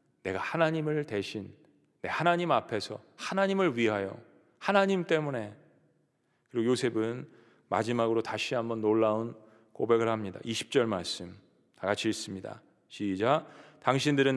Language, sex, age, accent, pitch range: Korean, male, 40-59, native, 125-185 Hz